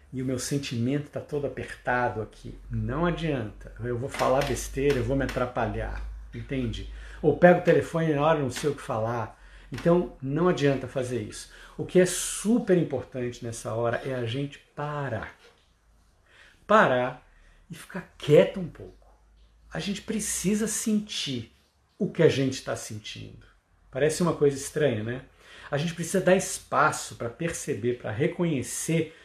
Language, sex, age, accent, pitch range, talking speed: Portuguese, male, 50-69, Brazilian, 120-175 Hz, 160 wpm